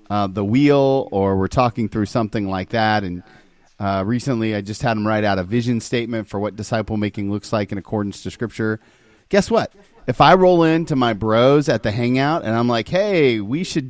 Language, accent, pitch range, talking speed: English, American, 105-135 Hz, 210 wpm